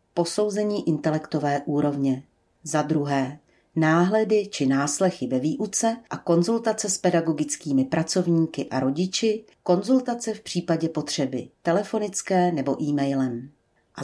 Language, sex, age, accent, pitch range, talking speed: Czech, female, 40-59, native, 150-205 Hz, 105 wpm